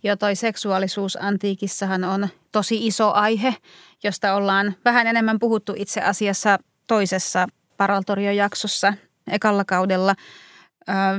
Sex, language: female, Finnish